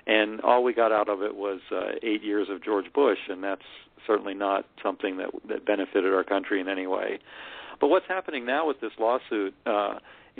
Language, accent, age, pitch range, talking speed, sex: English, American, 50-69, 100-125 Hz, 225 wpm, male